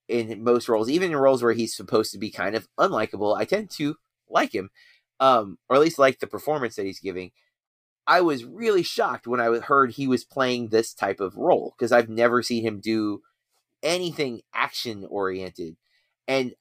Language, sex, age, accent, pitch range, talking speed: English, male, 30-49, American, 105-130 Hz, 190 wpm